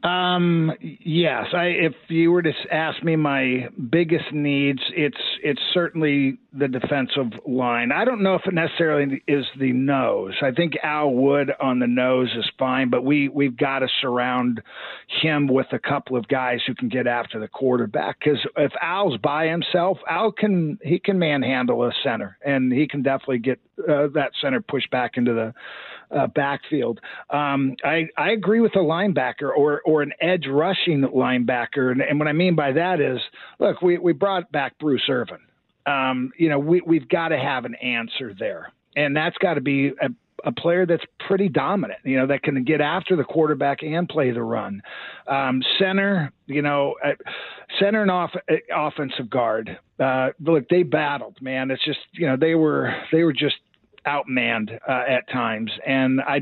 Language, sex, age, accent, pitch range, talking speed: English, male, 50-69, American, 130-165 Hz, 180 wpm